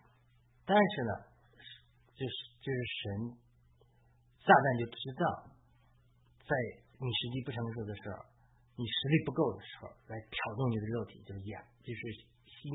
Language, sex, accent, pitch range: Chinese, male, native, 100-125 Hz